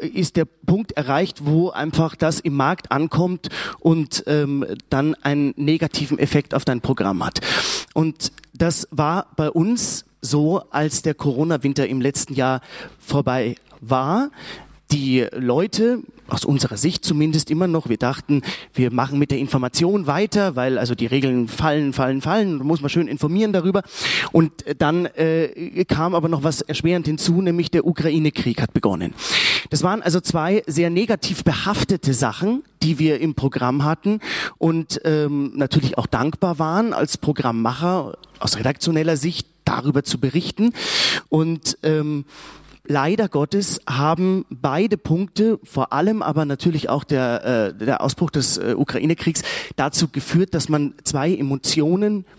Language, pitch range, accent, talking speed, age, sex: German, 140-170 Hz, German, 145 wpm, 30-49, male